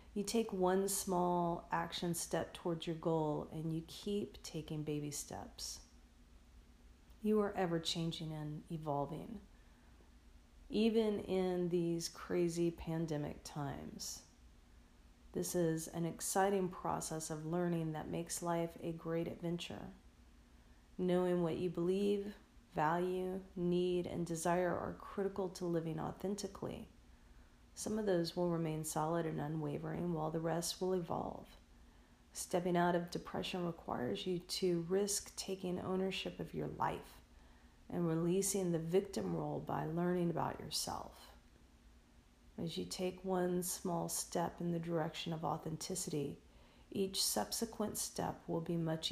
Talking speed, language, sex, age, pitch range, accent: 130 wpm, English, female, 40-59, 145-180 Hz, American